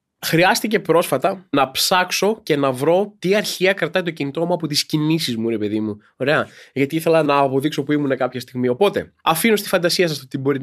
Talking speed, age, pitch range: 210 wpm, 20-39, 140-200 Hz